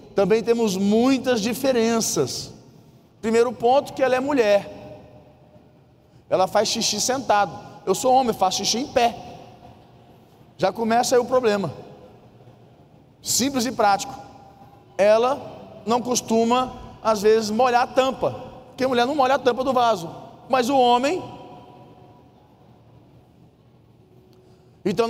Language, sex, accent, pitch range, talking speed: Portuguese, male, Brazilian, 185-235 Hz, 120 wpm